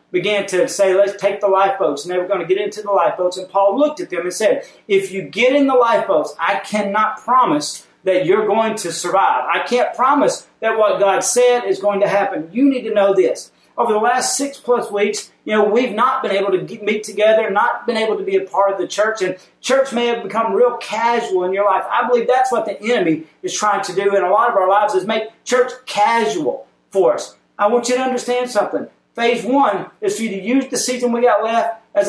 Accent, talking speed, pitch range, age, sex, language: American, 240 wpm, 195-245 Hz, 40-59, male, English